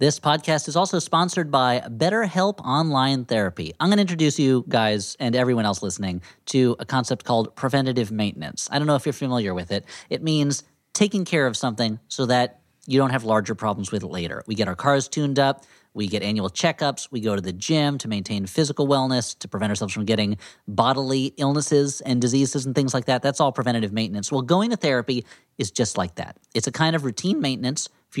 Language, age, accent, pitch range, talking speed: English, 40-59, American, 110-160 Hz, 215 wpm